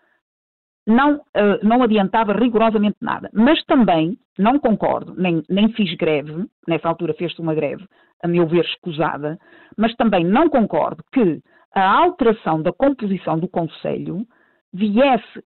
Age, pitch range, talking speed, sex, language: 50-69, 170-235 Hz, 130 wpm, female, Portuguese